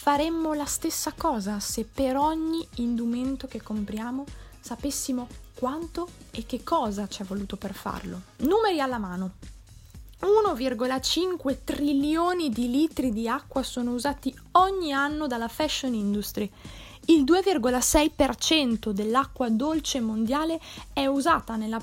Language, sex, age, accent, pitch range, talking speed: Italian, female, 20-39, native, 230-300 Hz, 120 wpm